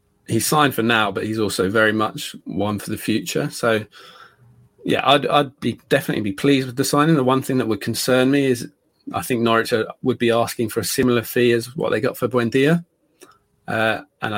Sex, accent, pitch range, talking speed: male, British, 100-125 Hz, 210 wpm